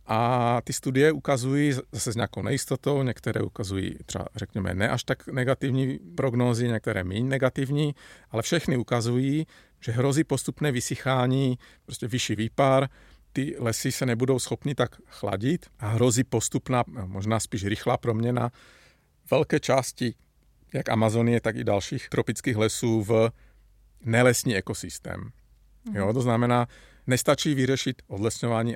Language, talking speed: Czech, 130 wpm